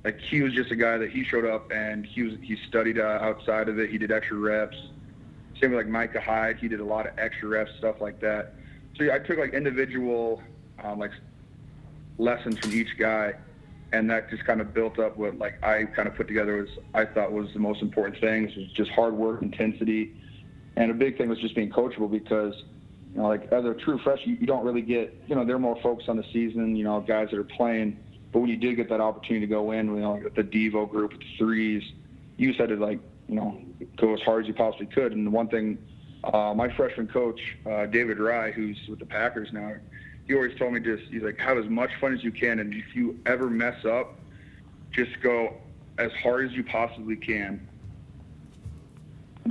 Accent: American